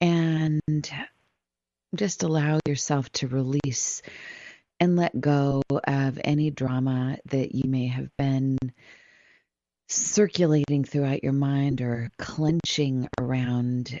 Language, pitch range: English, 120-145 Hz